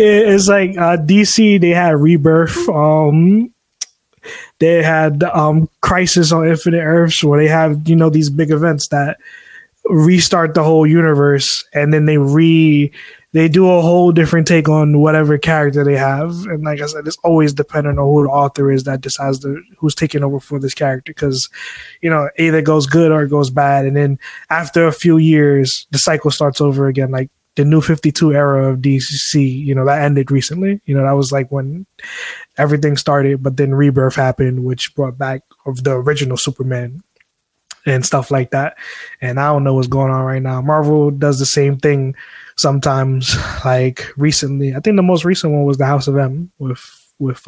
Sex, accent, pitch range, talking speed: male, American, 140-160 Hz, 190 wpm